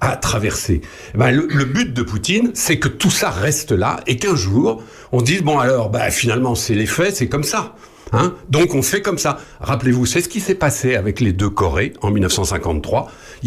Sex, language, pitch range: male, French, 105-155 Hz